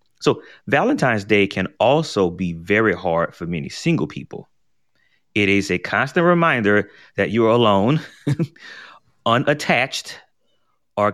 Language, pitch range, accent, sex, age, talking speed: English, 90-125 Hz, American, male, 30-49, 120 wpm